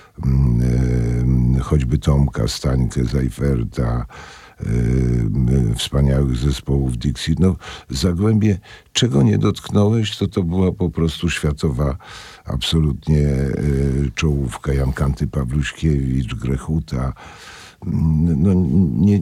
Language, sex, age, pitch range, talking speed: Polish, male, 50-69, 70-80 Hz, 95 wpm